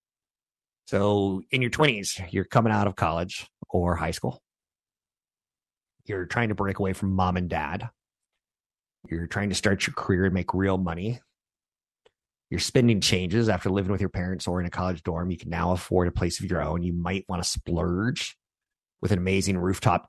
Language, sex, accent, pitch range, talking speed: English, male, American, 90-105 Hz, 185 wpm